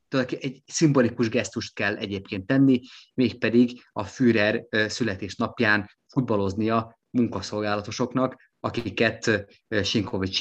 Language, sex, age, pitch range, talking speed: Hungarian, male, 20-39, 100-120 Hz, 80 wpm